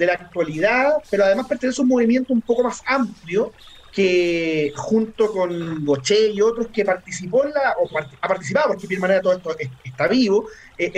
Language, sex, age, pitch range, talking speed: Spanish, male, 40-59, 175-225 Hz, 185 wpm